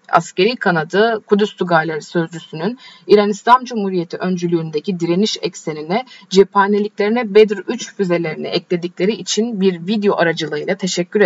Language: Turkish